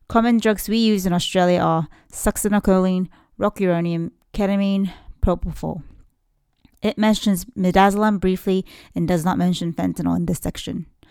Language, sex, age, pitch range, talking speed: English, female, 30-49, 175-215 Hz, 125 wpm